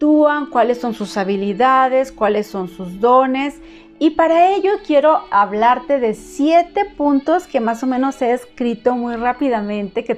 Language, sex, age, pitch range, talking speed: Spanish, female, 40-59, 215-280 Hz, 145 wpm